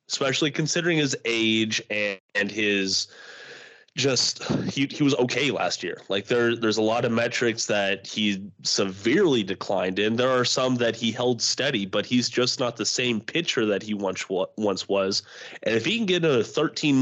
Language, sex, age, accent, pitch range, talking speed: English, male, 30-49, American, 110-140 Hz, 185 wpm